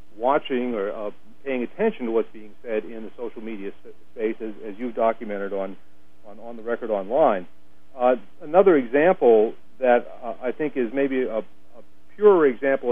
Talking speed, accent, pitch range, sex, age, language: 175 wpm, American, 105-125 Hz, male, 50-69, English